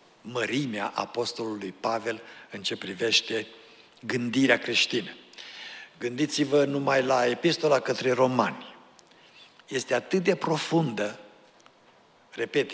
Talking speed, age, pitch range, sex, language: 90 wpm, 60-79, 120-150 Hz, male, Romanian